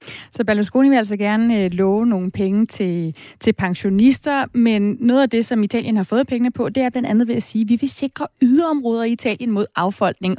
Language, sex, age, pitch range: Danish, female, 30-49, 205-260 Hz